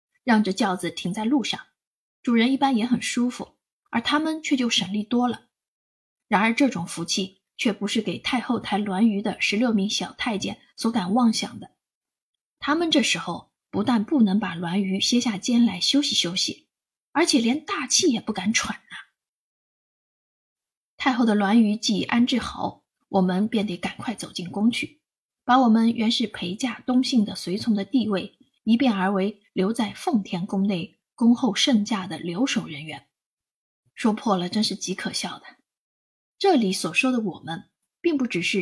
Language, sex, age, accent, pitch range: Chinese, female, 20-39, native, 195-255 Hz